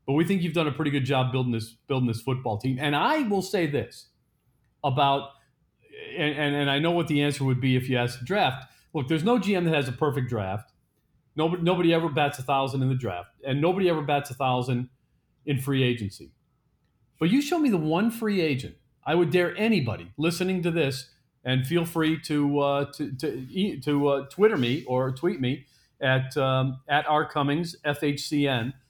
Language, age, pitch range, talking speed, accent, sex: English, 40-59, 130-160 Hz, 195 wpm, American, male